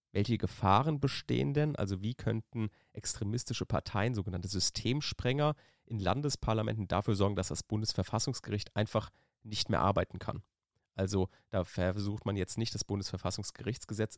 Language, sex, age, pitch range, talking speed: German, male, 30-49, 100-120 Hz, 130 wpm